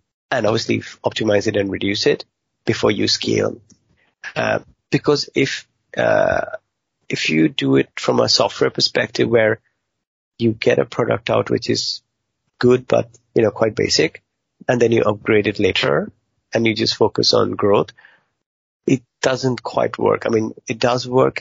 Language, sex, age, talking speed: English, male, 30-49, 160 wpm